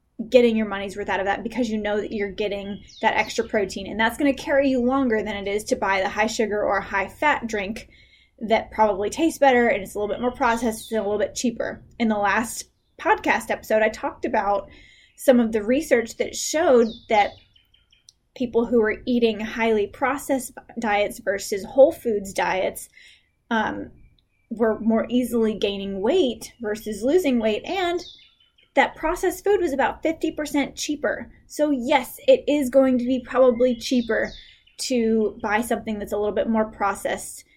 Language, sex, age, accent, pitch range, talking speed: English, female, 10-29, American, 210-260 Hz, 180 wpm